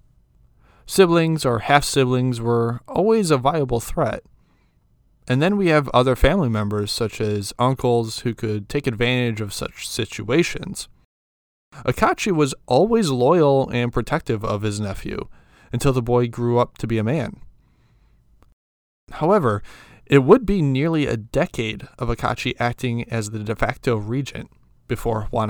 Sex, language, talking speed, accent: male, English, 140 wpm, American